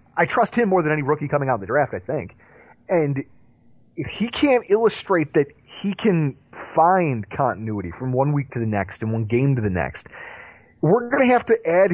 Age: 30-49